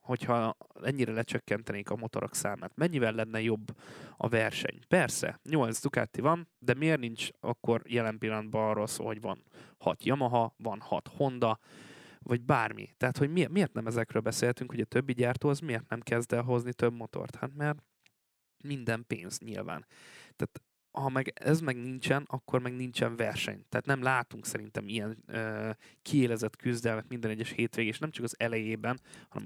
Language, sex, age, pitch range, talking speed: Hungarian, male, 20-39, 110-130 Hz, 165 wpm